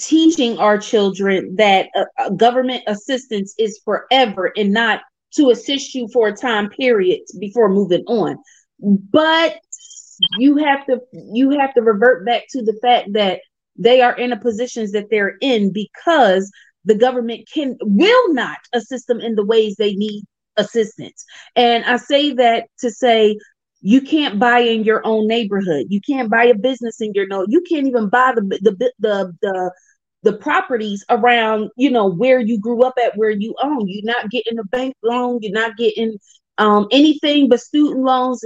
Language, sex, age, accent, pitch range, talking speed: English, female, 30-49, American, 210-255 Hz, 175 wpm